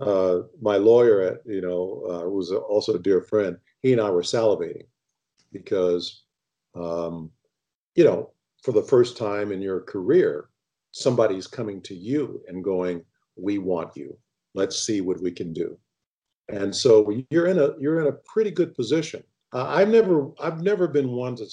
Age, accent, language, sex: 50-69, American, English, male